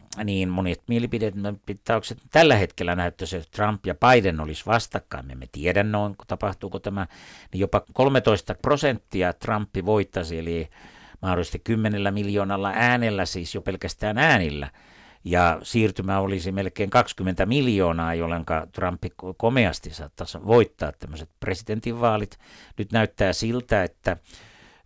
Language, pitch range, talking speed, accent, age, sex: Finnish, 85-110 Hz, 120 wpm, native, 60-79, male